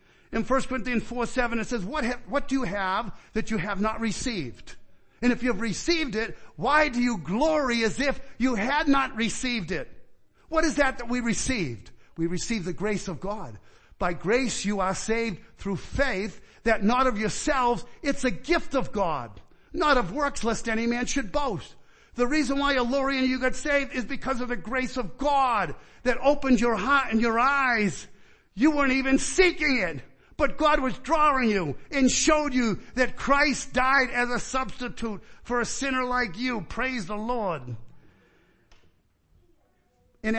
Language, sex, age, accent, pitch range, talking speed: English, male, 50-69, American, 205-260 Hz, 180 wpm